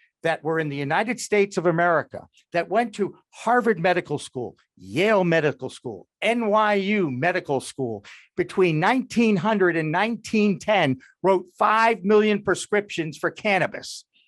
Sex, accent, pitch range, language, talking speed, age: male, American, 155-215 Hz, English, 125 wpm, 50-69